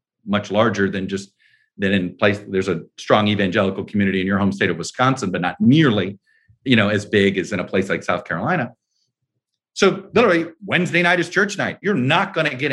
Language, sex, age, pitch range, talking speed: English, male, 40-59, 110-150 Hz, 205 wpm